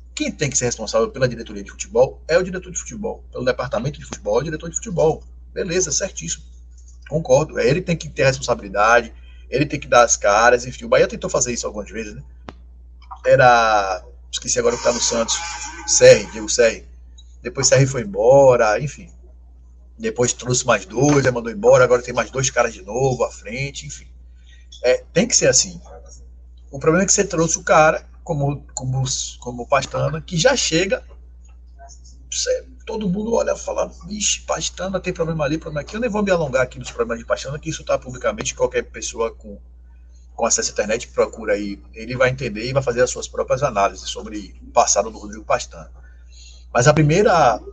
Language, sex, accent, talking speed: Portuguese, male, Brazilian, 195 wpm